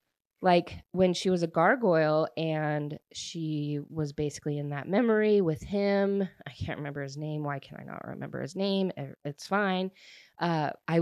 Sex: female